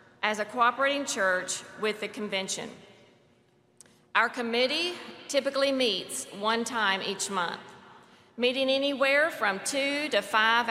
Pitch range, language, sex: 215-255 Hz, English, female